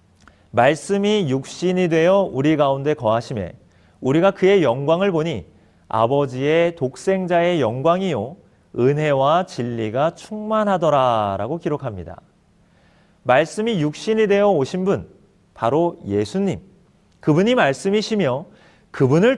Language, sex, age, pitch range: Korean, male, 30-49, 140-200 Hz